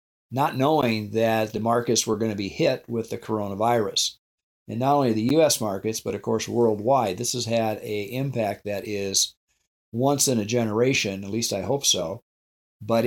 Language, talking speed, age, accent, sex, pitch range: English, 185 wpm, 50-69, American, male, 110-130 Hz